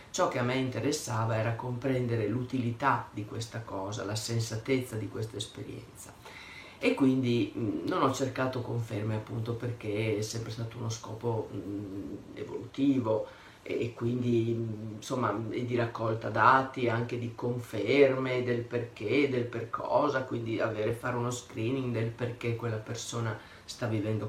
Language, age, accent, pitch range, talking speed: Italian, 30-49, native, 115-130 Hz, 140 wpm